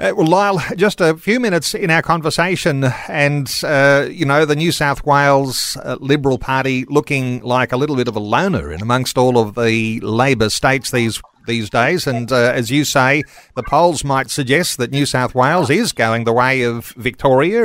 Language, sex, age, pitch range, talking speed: English, male, 40-59, 125-165 Hz, 195 wpm